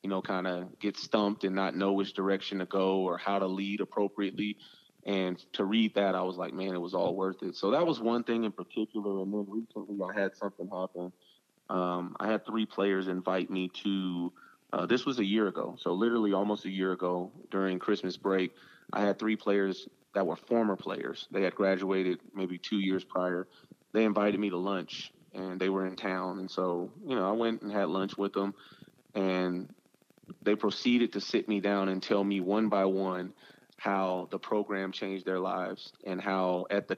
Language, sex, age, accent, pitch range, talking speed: English, male, 30-49, American, 95-105 Hz, 205 wpm